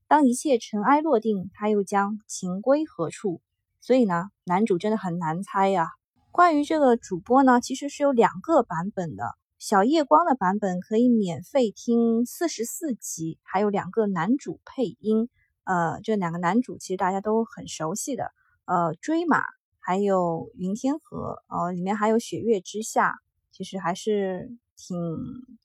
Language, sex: Chinese, female